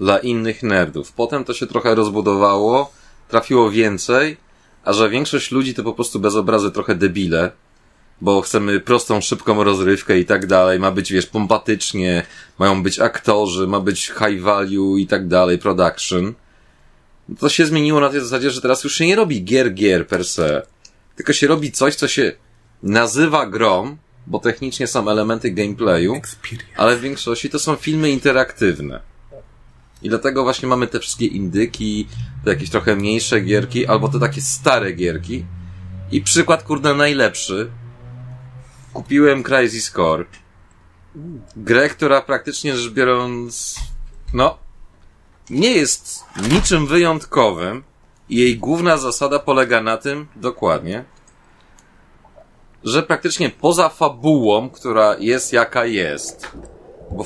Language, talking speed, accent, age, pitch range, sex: Polish, 135 wpm, native, 30-49, 100-135 Hz, male